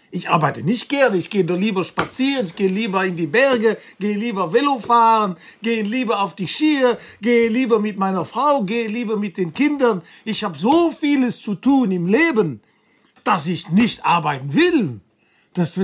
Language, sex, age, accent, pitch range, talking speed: German, male, 50-69, German, 175-230 Hz, 180 wpm